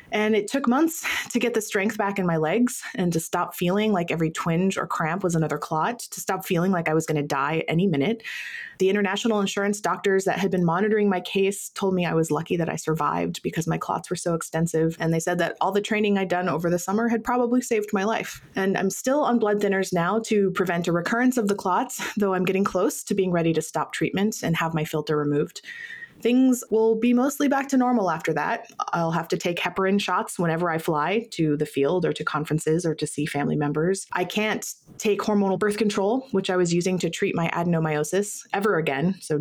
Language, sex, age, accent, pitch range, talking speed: English, female, 20-39, American, 165-220 Hz, 230 wpm